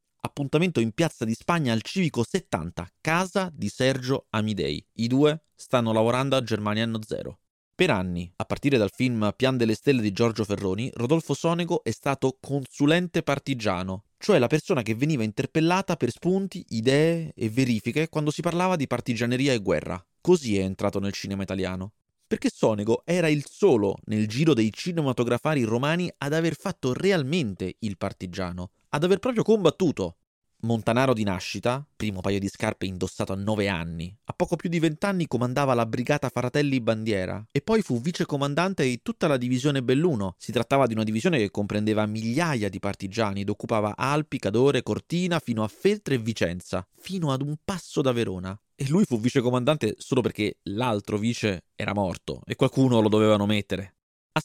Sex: male